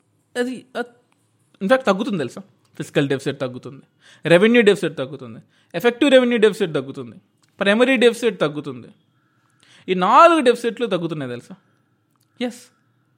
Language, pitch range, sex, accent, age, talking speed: Telugu, 140-210 Hz, male, native, 20-39, 105 wpm